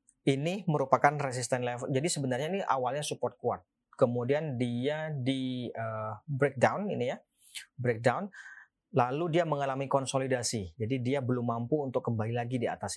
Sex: male